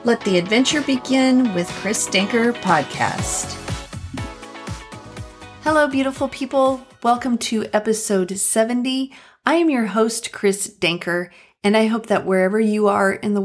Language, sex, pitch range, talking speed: English, female, 180-220 Hz, 135 wpm